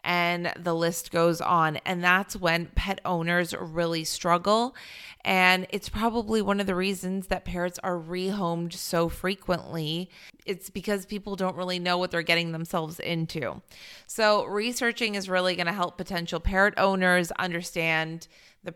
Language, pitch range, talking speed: English, 170-195 Hz, 155 wpm